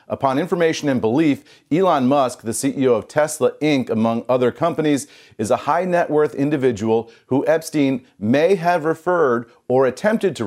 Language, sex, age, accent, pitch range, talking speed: English, male, 40-59, American, 110-140 Hz, 160 wpm